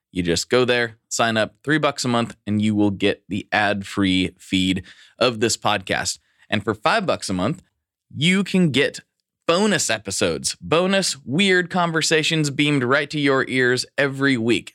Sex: male